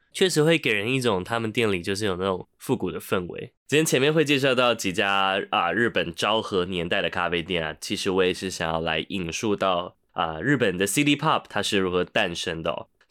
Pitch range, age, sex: 90-130 Hz, 20-39, male